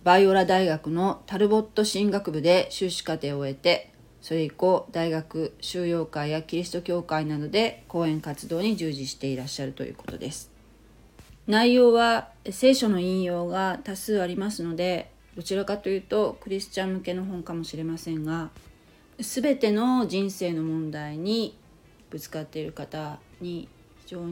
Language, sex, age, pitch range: Japanese, female, 40-59, 150-195 Hz